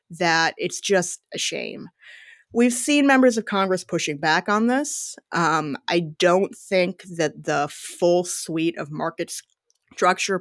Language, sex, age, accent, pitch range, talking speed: English, female, 30-49, American, 155-185 Hz, 145 wpm